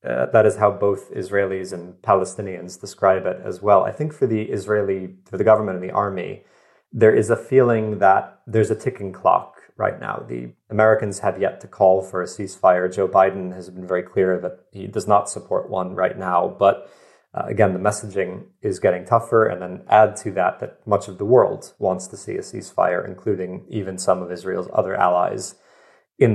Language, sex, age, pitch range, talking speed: English, male, 30-49, 90-105 Hz, 200 wpm